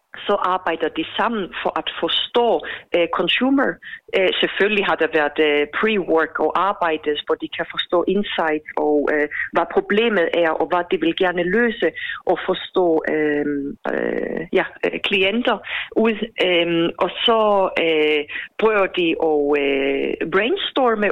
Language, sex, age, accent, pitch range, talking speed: Danish, female, 40-59, native, 170-230 Hz, 140 wpm